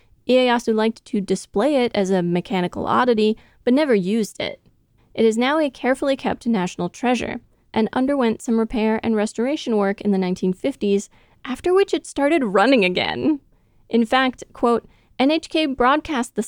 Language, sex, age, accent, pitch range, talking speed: English, female, 20-39, American, 200-255 Hz, 155 wpm